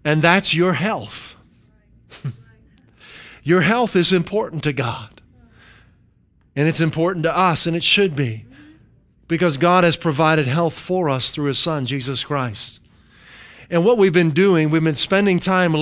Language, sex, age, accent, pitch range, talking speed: English, male, 50-69, American, 145-185 Hz, 150 wpm